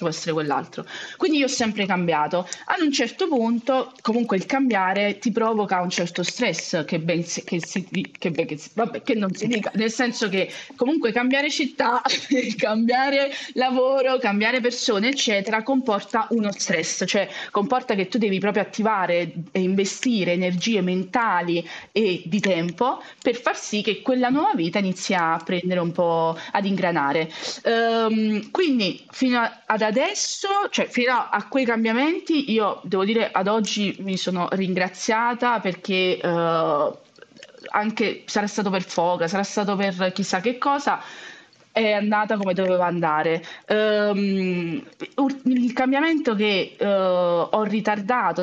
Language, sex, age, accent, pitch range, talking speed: Italian, female, 20-39, native, 180-235 Hz, 145 wpm